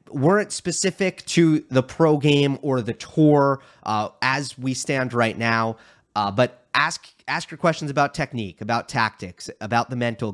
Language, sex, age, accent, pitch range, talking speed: English, male, 30-49, American, 110-145 Hz, 165 wpm